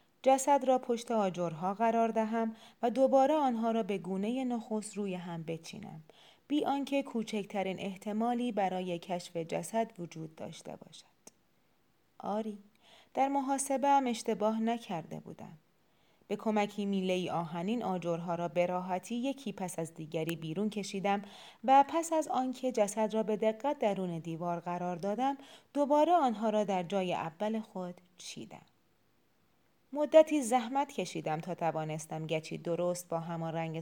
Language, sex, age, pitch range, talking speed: Persian, female, 30-49, 175-230 Hz, 135 wpm